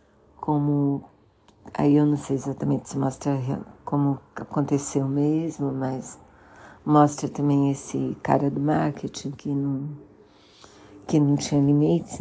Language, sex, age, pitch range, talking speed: Portuguese, female, 60-79, 135-150 Hz, 120 wpm